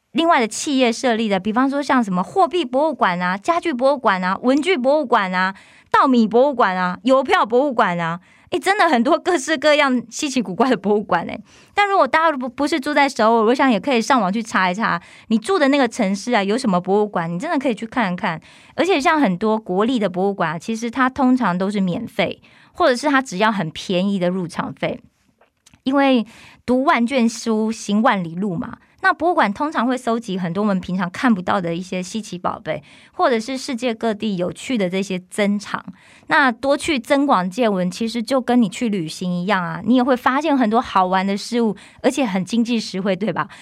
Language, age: Korean, 20-39